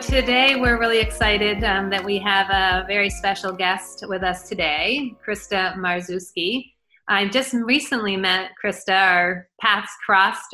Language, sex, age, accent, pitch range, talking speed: English, female, 30-49, American, 180-215 Hz, 140 wpm